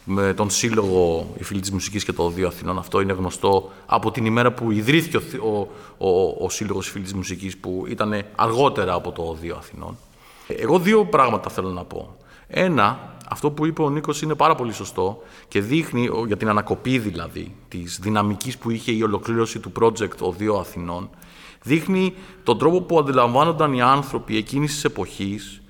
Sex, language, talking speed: male, Greek, 175 wpm